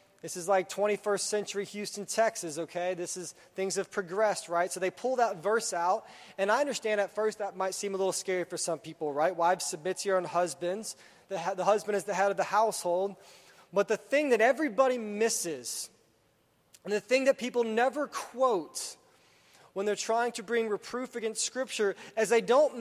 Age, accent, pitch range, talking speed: 20-39, American, 185-225 Hz, 195 wpm